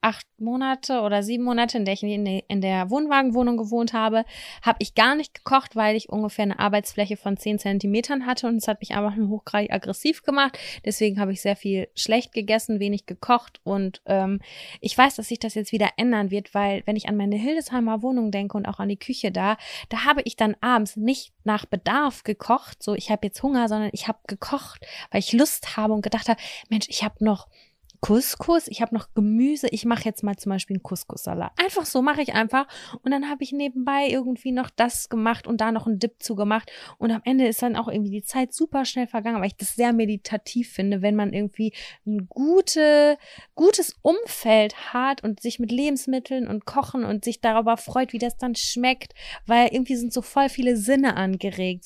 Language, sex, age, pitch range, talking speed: German, female, 20-39, 205-250 Hz, 210 wpm